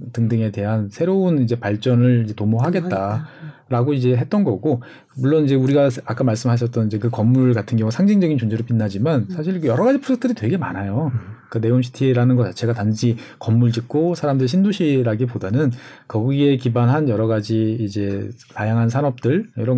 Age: 40-59